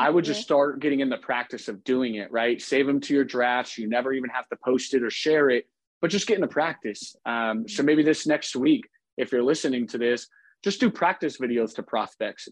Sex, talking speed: male, 235 wpm